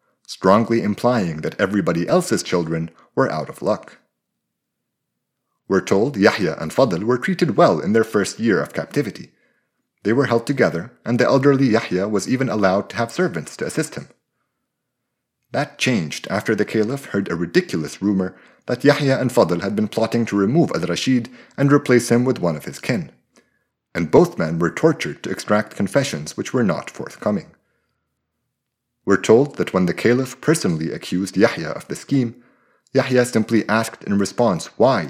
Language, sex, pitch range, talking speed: English, male, 100-130 Hz, 170 wpm